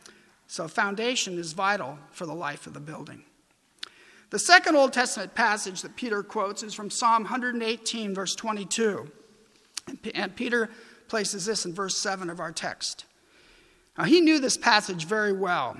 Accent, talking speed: American, 155 wpm